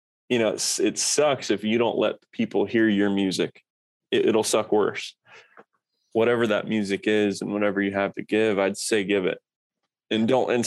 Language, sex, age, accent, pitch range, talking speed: English, male, 20-39, American, 105-120 Hz, 190 wpm